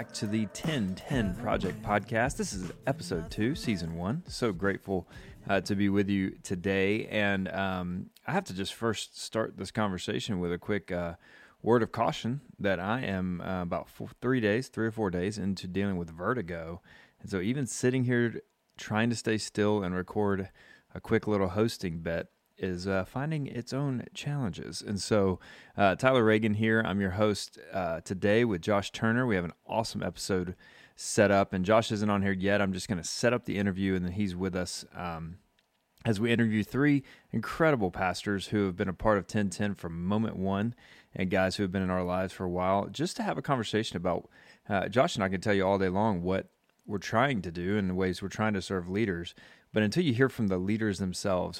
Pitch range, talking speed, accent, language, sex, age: 95-110 Hz, 210 wpm, American, English, male, 30-49